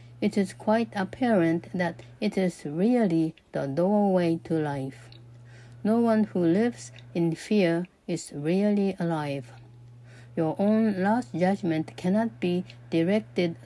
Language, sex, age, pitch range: Japanese, female, 60-79, 140-200 Hz